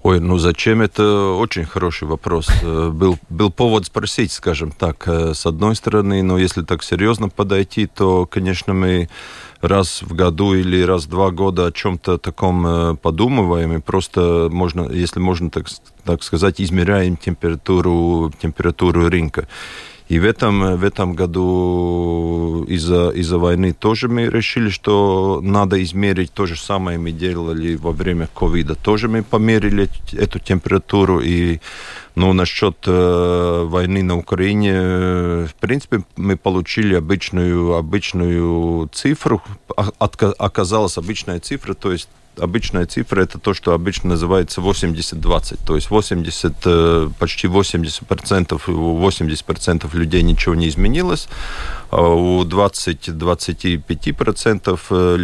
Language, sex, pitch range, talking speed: Russian, male, 85-95 Hz, 125 wpm